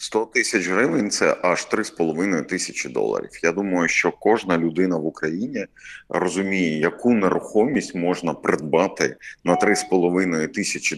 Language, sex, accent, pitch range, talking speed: Ukrainian, male, native, 80-95 Hz, 130 wpm